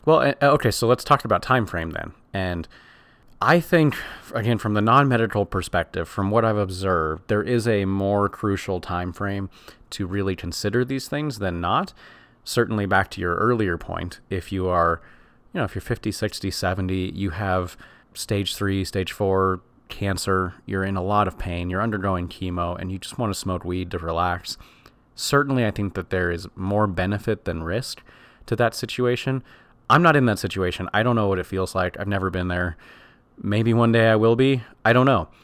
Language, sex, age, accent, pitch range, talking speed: English, male, 30-49, American, 90-110 Hz, 195 wpm